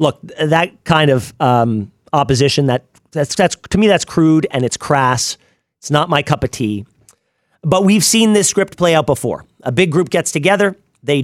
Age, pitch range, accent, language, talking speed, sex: 40-59, 140-185 Hz, American, English, 190 wpm, male